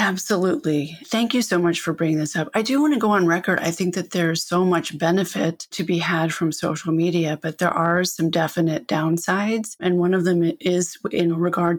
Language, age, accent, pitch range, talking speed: English, 30-49, American, 165-185 Hz, 215 wpm